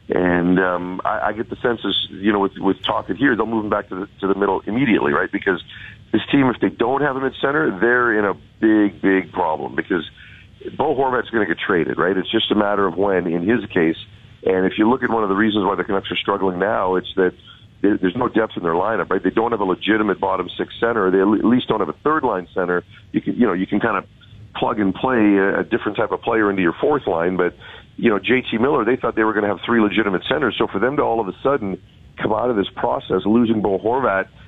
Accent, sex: American, male